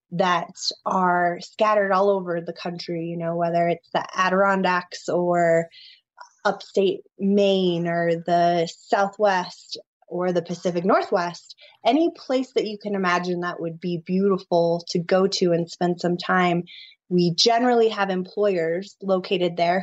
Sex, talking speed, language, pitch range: female, 140 wpm, English, 175-200 Hz